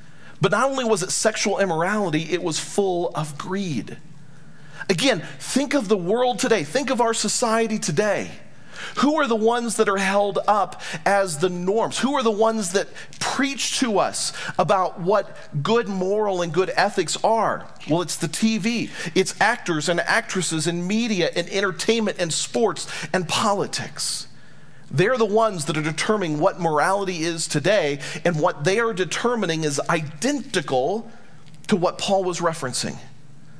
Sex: male